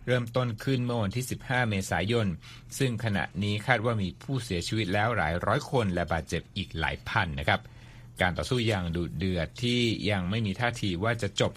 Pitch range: 95-120 Hz